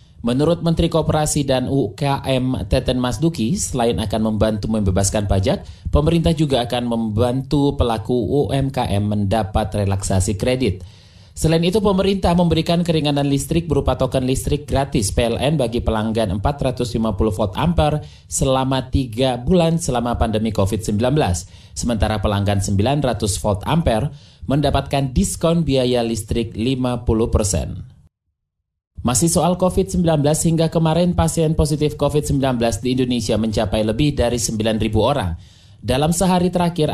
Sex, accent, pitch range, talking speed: male, native, 110-150 Hz, 115 wpm